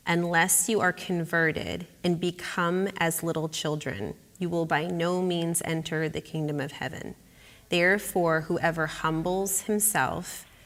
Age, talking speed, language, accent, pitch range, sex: 30-49, 130 wpm, English, American, 165-220 Hz, female